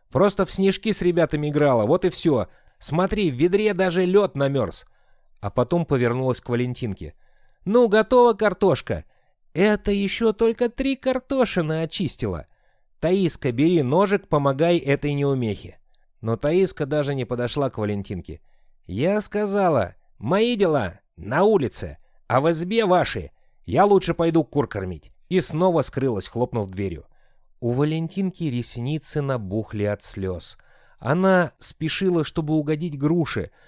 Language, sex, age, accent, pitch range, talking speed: Russian, male, 30-49, native, 120-180 Hz, 130 wpm